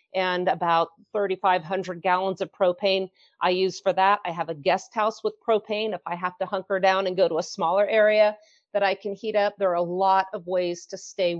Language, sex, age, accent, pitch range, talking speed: English, female, 40-59, American, 180-210 Hz, 220 wpm